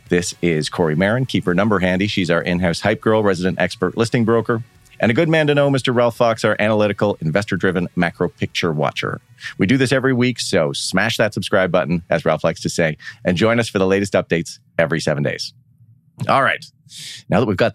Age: 40-59